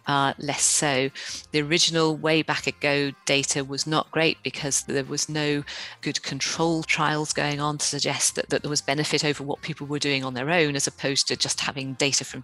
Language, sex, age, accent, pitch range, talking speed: English, female, 40-59, British, 140-155 Hz, 205 wpm